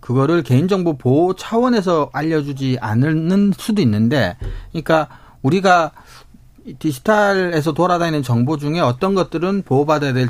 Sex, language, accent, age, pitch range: male, Korean, native, 40-59, 125-195 Hz